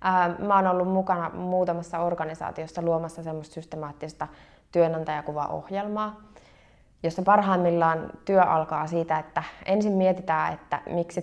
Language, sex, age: Finnish, female, 20-39